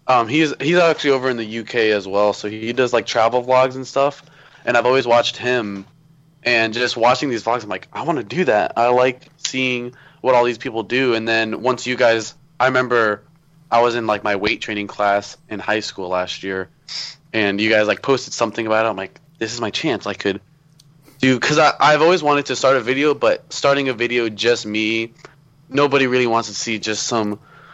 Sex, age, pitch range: male, 20-39, 105-140 Hz